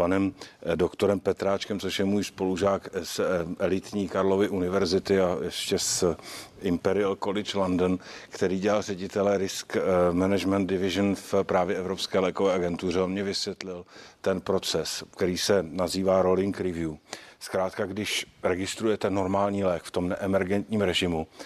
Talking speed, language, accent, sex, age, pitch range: 130 wpm, Czech, native, male, 50-69, 90-100 Hz